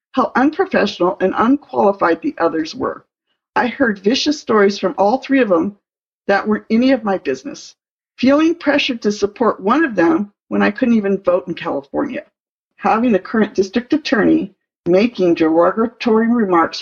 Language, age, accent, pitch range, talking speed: English, 50-69, American, 185-265 Hz, 155 wpm